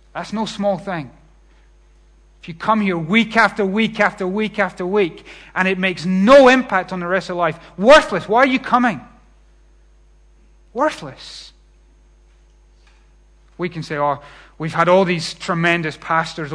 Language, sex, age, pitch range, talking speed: English, male, 30-49, 160-230 Hz, 150 wpm